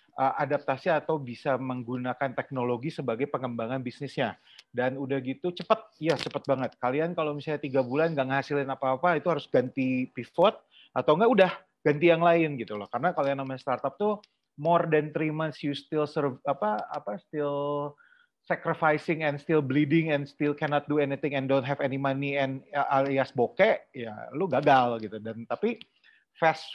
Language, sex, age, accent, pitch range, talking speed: Indonesian, male, 30-49, native, 125-160 Hz, 165 wpm